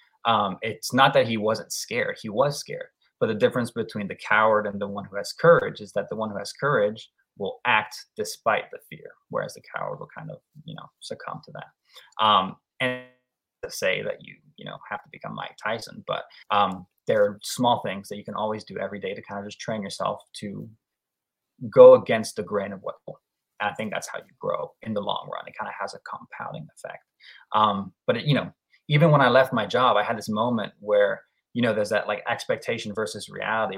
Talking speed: 220 wpm